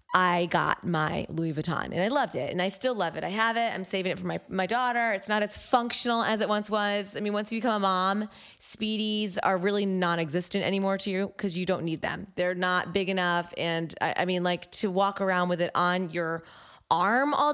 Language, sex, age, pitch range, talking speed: English, female, 20-39, 180-215 Hz, 235 wpm